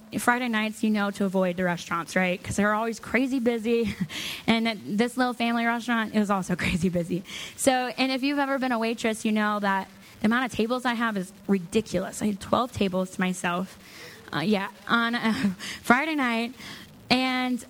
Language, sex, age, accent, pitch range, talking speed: English, female, 10-29, American, 200-240 Hz, 190 wpm